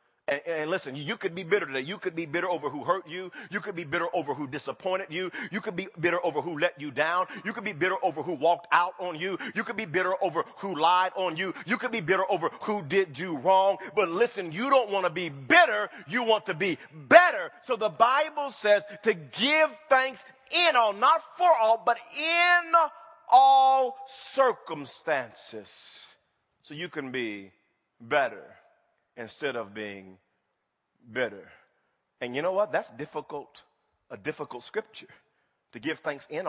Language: English